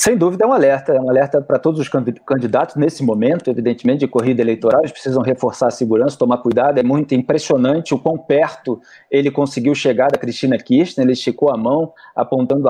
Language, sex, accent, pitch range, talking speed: Portuguese, male, Brazilian, 135-185 Hz, 200 wpm